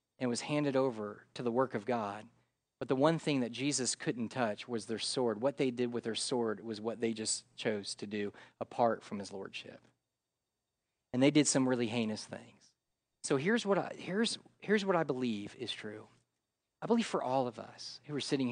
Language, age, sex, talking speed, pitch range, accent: English, 40-59, male, 210 wpm, 120-180 Hz, American